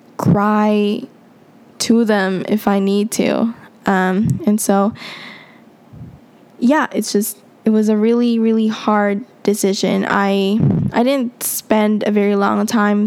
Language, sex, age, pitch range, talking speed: English, female, 10-29, 200-225 Hz, 130 wpm